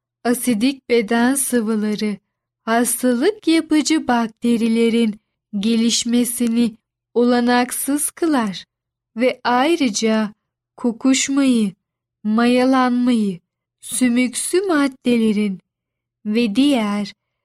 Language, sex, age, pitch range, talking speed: Turkish, female, 10-29, 220-275 Hz, 60 wpm